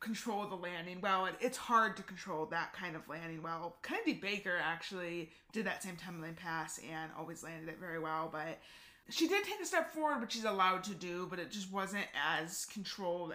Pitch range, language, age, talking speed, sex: 175-225 Hz, English, 20-39, 205 wpm, female